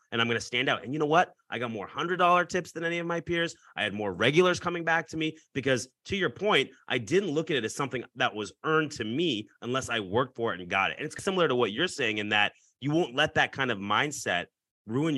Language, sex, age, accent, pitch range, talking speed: English, male, 30-49, American, 120-170 Hz, 275 wpm